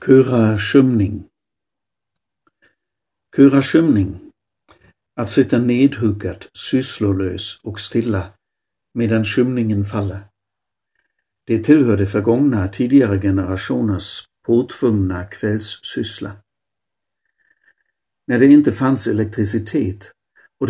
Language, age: Swedish, 60-79